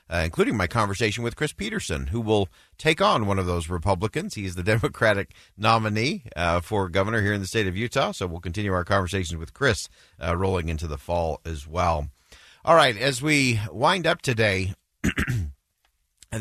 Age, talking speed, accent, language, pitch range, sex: 50-69, 185 wpm, American, English, 90-120 Hz, male